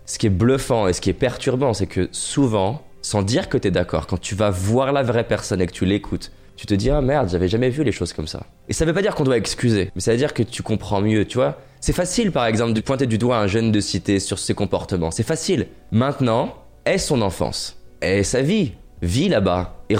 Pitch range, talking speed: 90-120 Hz, 265 wpm